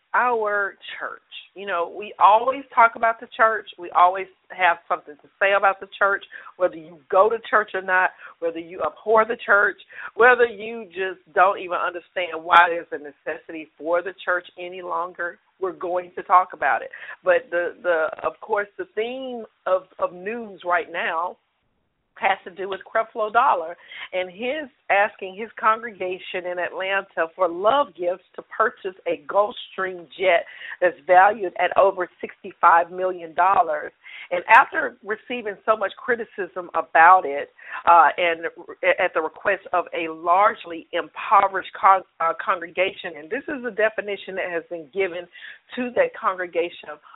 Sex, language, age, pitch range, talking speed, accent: female, English, 50-69, 175-220 Hz, 160 wpm, American